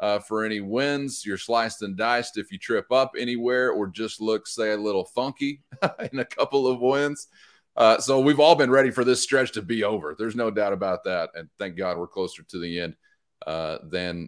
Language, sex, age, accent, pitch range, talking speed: English, male, 30-49, American, 100-145 Hz, 220 wpm